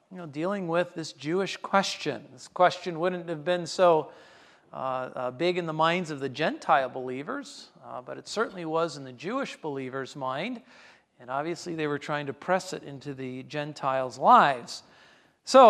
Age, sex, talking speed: 50-69, male, 175 wpm